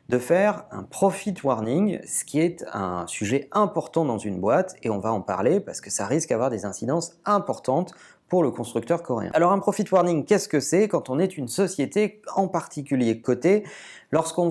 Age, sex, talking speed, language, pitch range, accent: 40-59, male, 195 wpm, French, 140-190 Hz, French